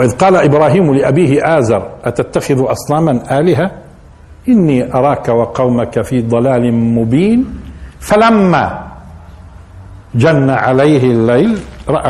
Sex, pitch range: male, 85-140 Hz